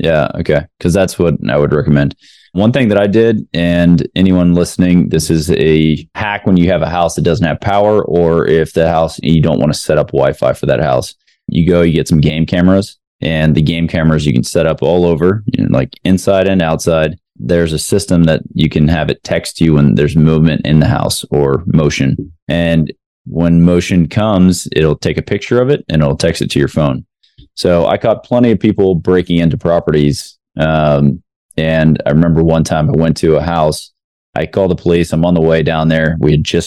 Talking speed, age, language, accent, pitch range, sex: 215 wpm, 20-39, English, American, 80-90 Hz, male